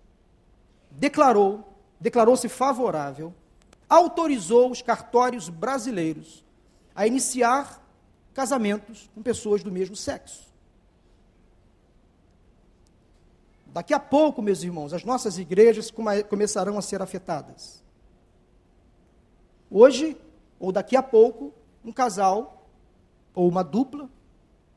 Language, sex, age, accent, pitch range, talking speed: Portuguese, male, 50-69, Brazilian, 185-270 Hz, 90 wpm